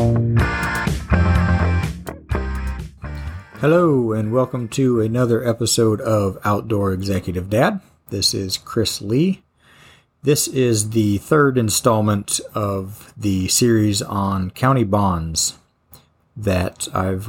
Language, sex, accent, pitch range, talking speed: English, male, American, 95-115 Hz, 95 wpm